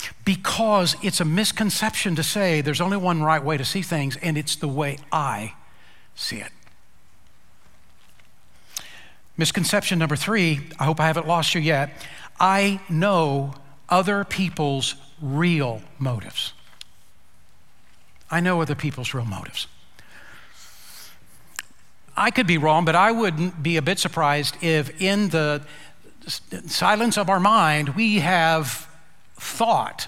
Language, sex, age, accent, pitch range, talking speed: English, male, 60-79, American, 140-185 Hz, 130 wpm